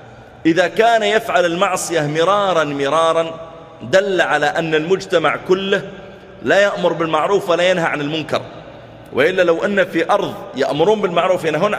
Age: 30-49